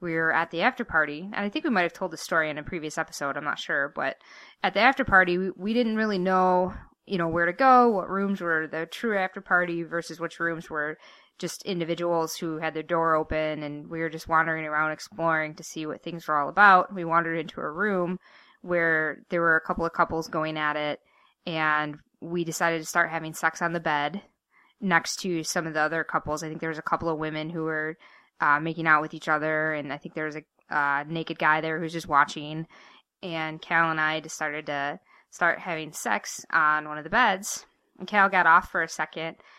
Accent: American